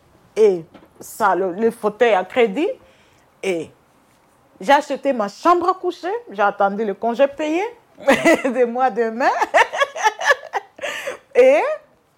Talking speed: 115 wpm